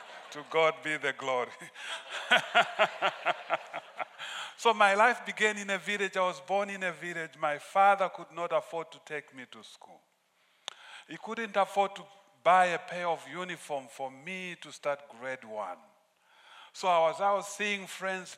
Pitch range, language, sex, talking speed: 145-195 Hz, English, male, 165 wpm